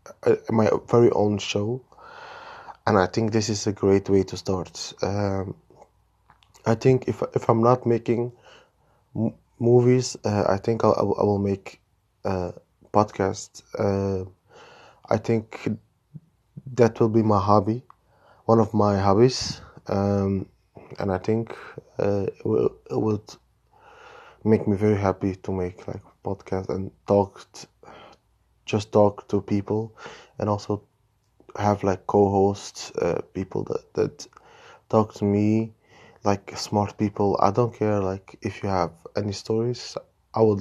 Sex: male